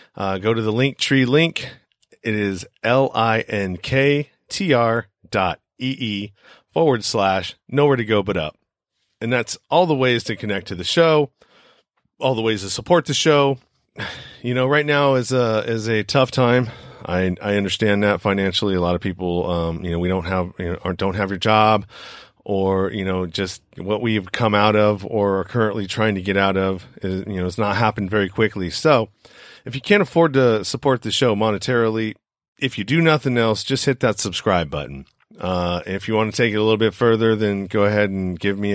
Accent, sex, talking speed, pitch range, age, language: American, male, 210 wpm, 95-120 Hz, 40-59, English